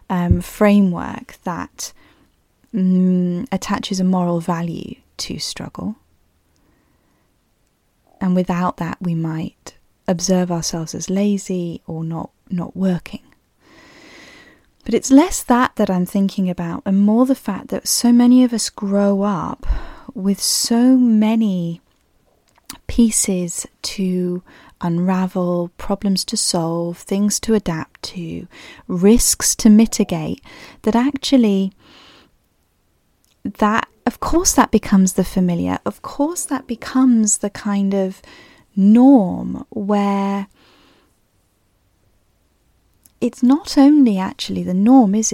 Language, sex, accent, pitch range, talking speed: English, female, British, 180-235 Hz, 110 wpm